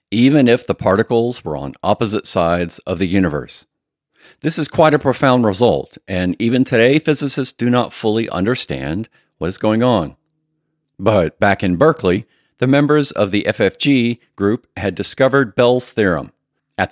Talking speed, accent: 155 wpm, American